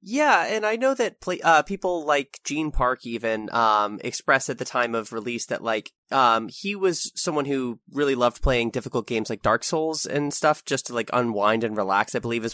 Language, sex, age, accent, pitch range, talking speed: English, male, 20-39, American, 115-160 Hz, 215 wpm